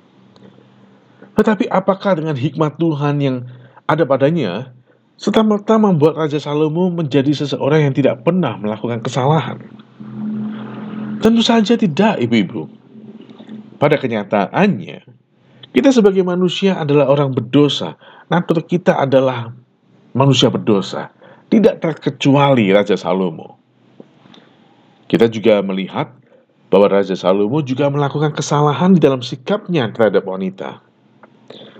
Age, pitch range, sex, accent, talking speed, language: 50-69, 125-180 Hz, male, native, 100 wpm, Indonesian